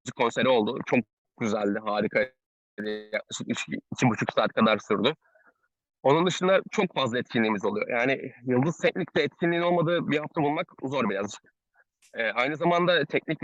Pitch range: 135-175 Hz